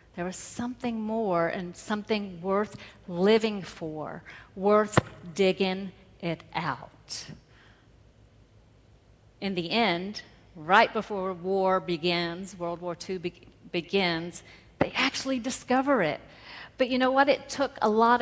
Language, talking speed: English, 120 wpm